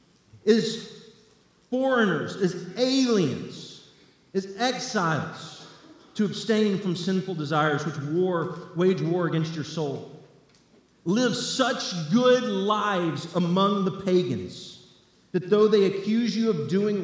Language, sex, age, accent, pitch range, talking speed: English, male, 40-59, American, 150-190 Hz, 115 wpm